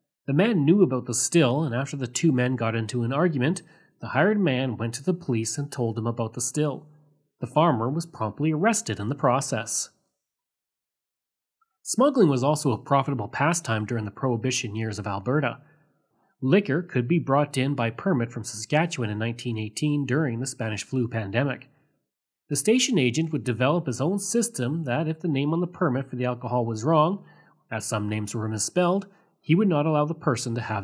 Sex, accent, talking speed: male, Canadian, 190 wpm